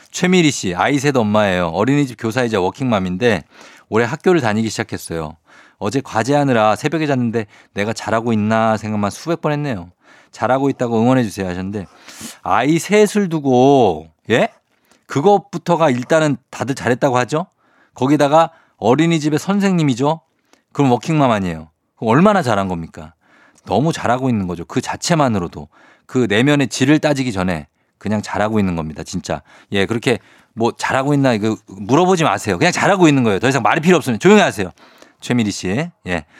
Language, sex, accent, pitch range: Korean, male, native, 100-145 Hz